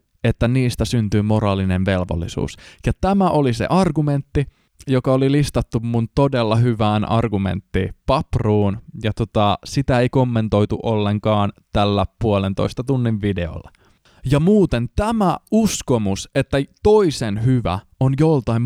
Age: 20-39